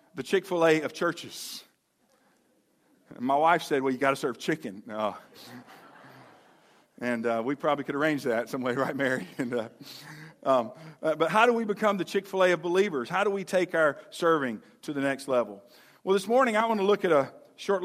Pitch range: 135-165 Hz